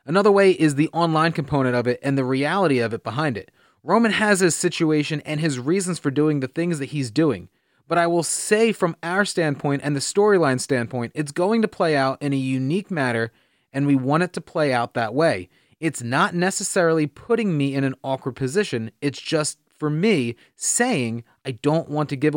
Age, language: 30-49, English